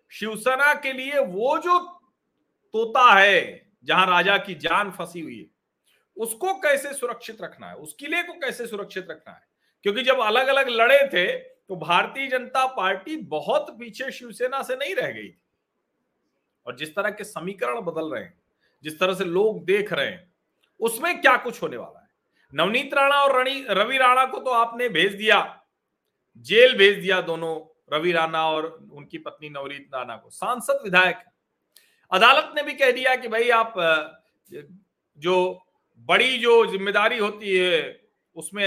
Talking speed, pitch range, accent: 160 wpm, 175-265 Hz, native